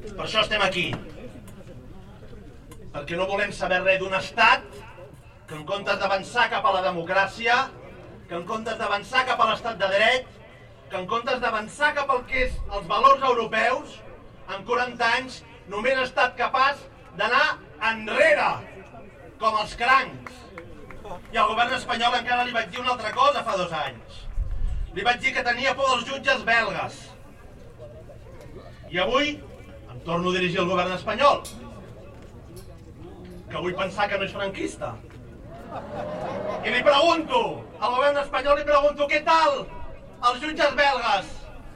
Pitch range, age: 200-295 Hz, 40-59